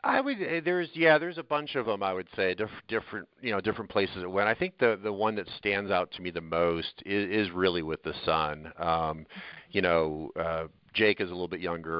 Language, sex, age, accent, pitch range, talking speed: English, male, 40-59, American, 80-90 Hz, 240 wpm